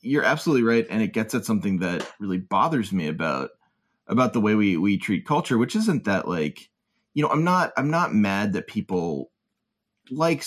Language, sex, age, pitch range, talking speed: English, male, 20-39, 95-130 Hz, 195 wpm